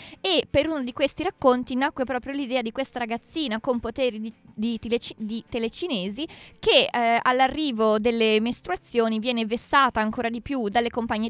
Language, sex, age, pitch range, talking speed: Italian, female, 20-39, 215-255 Hz, 165 wpm